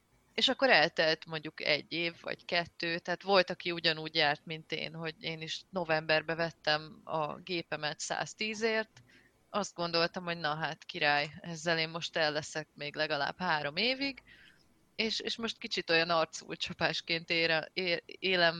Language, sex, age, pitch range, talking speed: Hungarian, female, 30-49, 160-190 Hz, 155 wpm